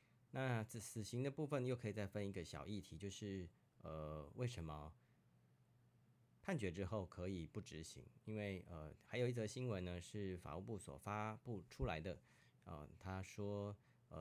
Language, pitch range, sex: Chinese, 85-115 Hz, male